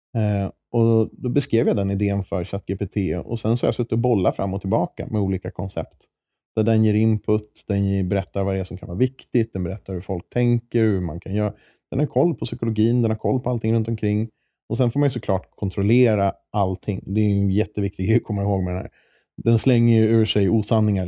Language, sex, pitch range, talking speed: English, male, 95-110 Hz, 235 wpm